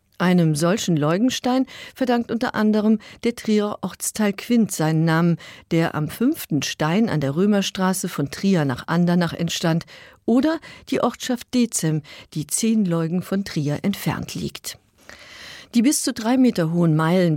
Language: German